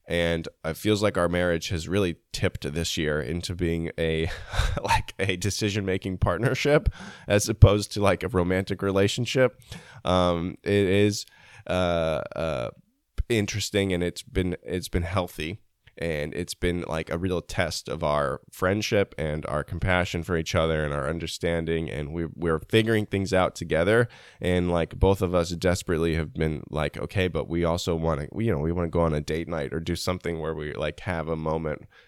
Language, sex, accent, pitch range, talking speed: English, male, American, 80-100 Hz, 185 wpm